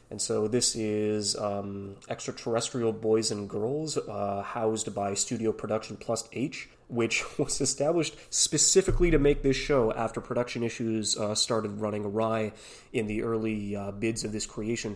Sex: male